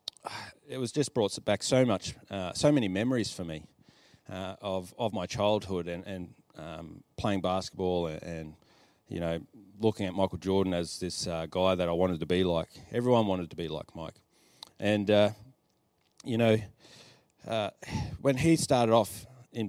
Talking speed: 175 wpm